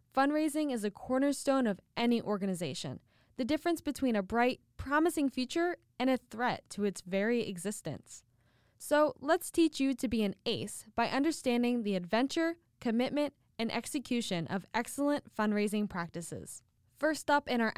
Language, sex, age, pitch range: English, female, 10-29, 200-270 Hz